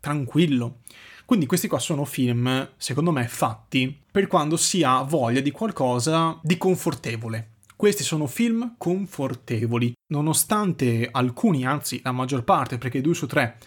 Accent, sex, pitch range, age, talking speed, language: native, male, 125-165 Hz, 20-39, 140 wpm, Italian